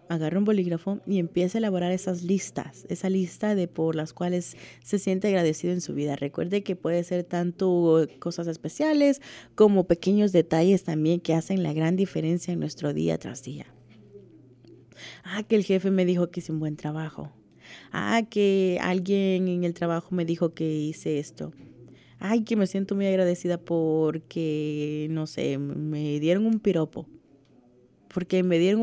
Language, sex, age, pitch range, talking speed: English, female, 30-49, 155-200 Hz, 165 wpm